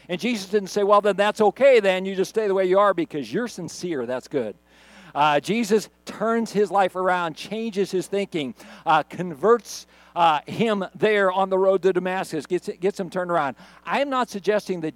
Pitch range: 150-200 Hz